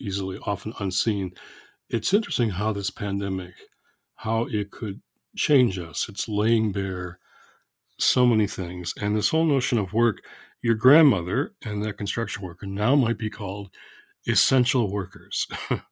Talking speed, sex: 140 wpm, male